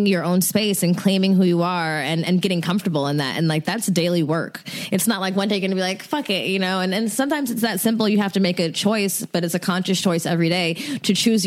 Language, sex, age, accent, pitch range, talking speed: English, female, 20-39, American, 175-210 Hz, 285 wpm